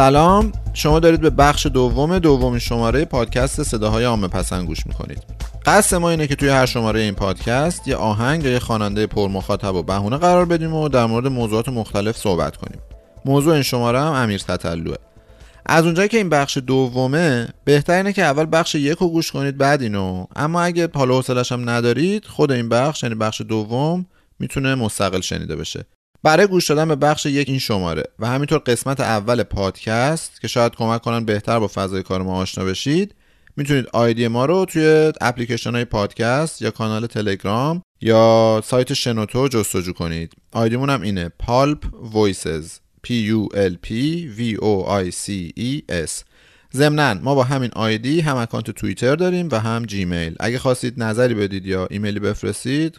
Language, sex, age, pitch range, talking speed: Persian, male, 30-49, 105-145 Hz, 170 wpm